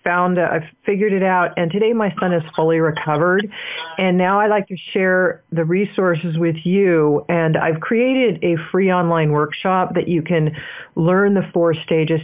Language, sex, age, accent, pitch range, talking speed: English, female, 40-59, American, 155-185 Hz, 180 wpm